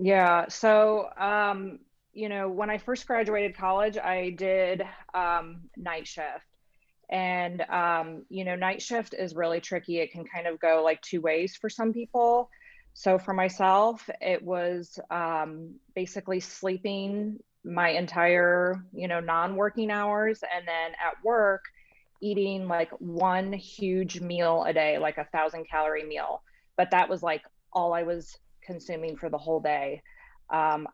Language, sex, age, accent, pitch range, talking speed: English, female, 30-49, American, 160-195 Hz, 150 wpm